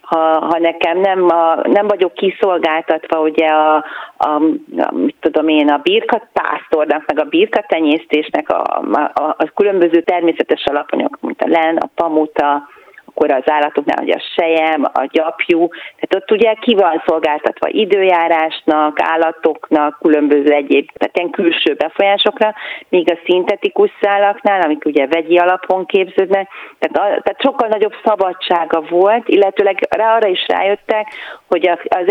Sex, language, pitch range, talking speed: female, Hungarian, 160-200 Hz, 140 wpm